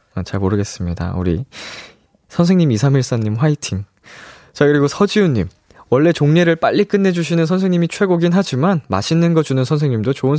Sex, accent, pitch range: male, native, 105-155 Hz